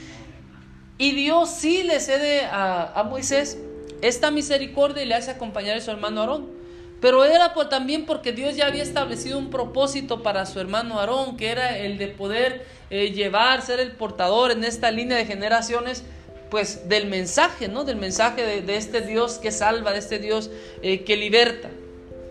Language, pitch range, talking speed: Spanish, 210-285 Hz, 180 wpm